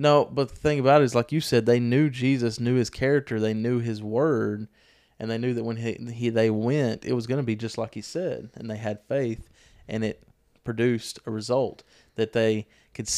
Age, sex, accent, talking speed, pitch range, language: 20-39, male, American, 230 wpm, 110-125 Hz, English